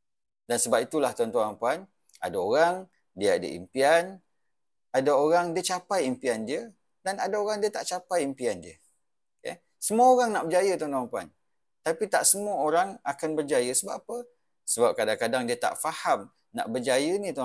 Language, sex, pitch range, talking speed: English, male, 155-230 Hz, 170 wpm